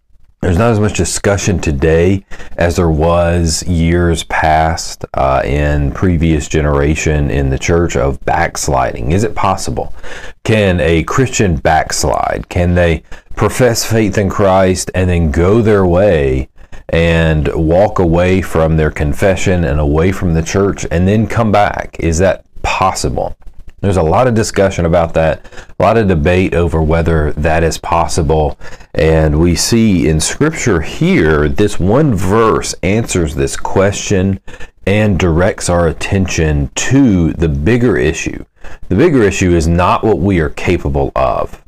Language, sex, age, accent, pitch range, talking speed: English, male, 40-59, American, 80-100 Hz, 145 wpm